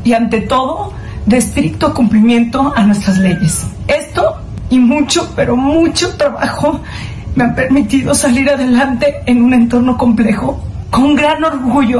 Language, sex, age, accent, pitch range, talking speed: Spanish, female, 40-59, Mexican, 230-275 Hz, 135 wpm